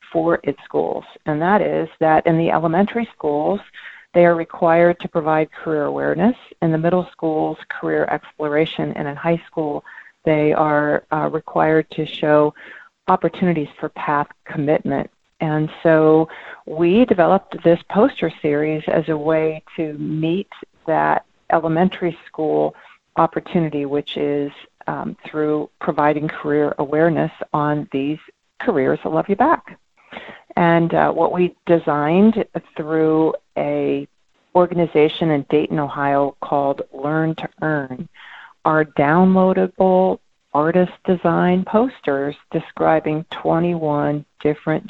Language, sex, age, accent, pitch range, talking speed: English, female, 40-59, American, 150-175 Hz, 120 wpm